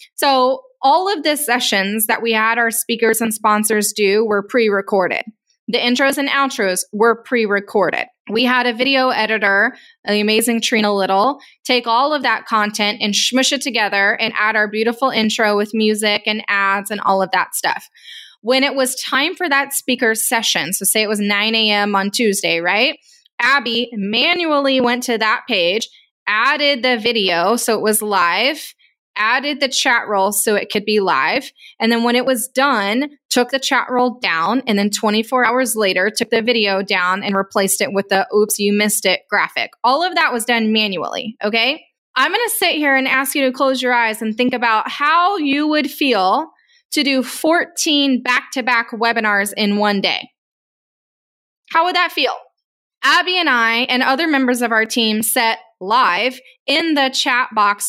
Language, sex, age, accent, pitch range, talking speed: English, female, 10-29, American, 210-270 Hz, 180 wpm